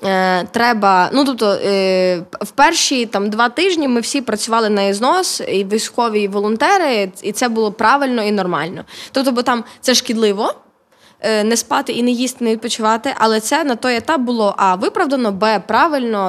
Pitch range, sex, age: 195-255 Hz, female, 20-39